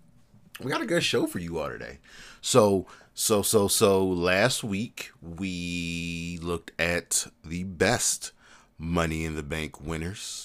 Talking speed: 145 wpm